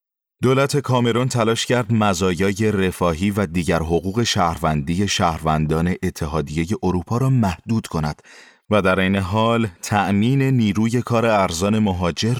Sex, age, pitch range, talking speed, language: male, 30-49, 85-125 Hz, 120 wpm, Persian